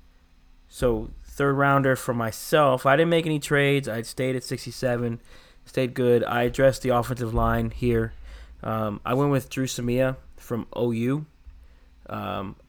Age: 20-39